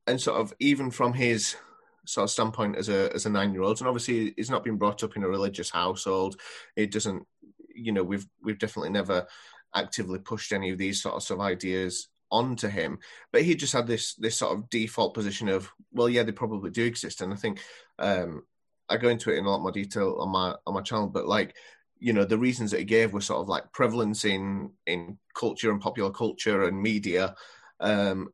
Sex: male